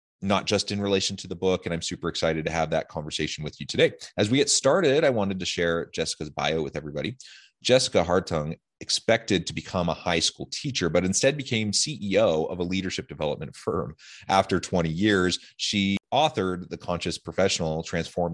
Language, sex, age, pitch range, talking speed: English, male, 30-49, 85-110 Hz, 185 wpm